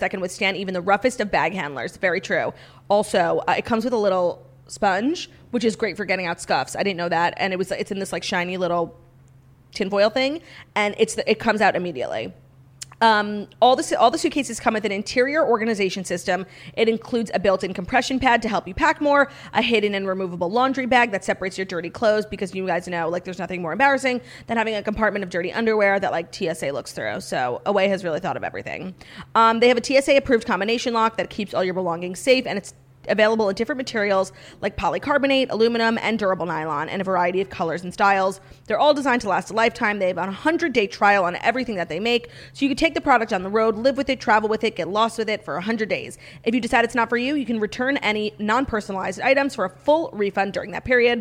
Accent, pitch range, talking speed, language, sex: American, 185-235 Hz, 235 wpm, English, female